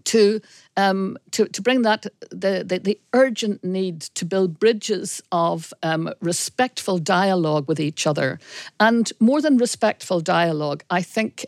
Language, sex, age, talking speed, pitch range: English, female, 60-79, 145 wpm, 165-210 Hz